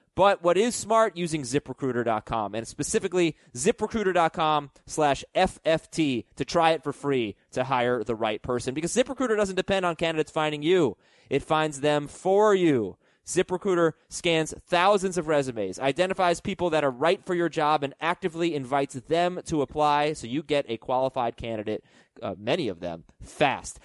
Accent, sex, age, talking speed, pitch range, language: American, male, 30-49, 160 wpm, 130-180 Hz, English